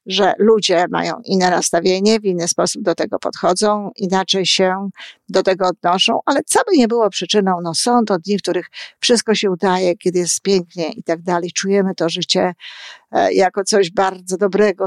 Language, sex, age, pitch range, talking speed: Polish, female, 50-69, 185-215 Hz, 180 wpm